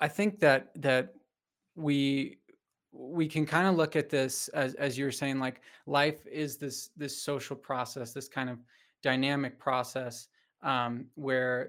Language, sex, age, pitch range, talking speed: English, male, 20-39, 130-150 Hz, 155 wpm